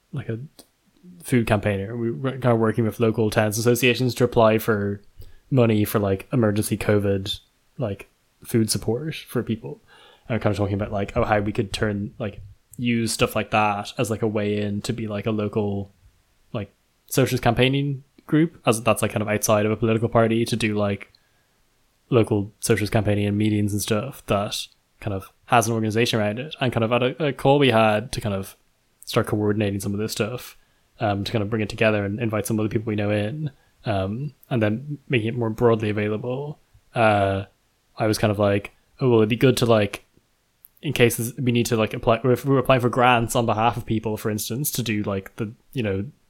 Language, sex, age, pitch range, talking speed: English, male, 10-29, 105-120 Hz, 215 wpm